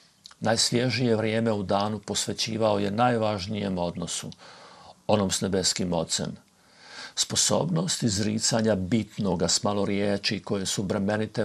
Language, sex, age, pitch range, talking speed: Croatian, male, 50-69, 100-115 Hz, 105 wpm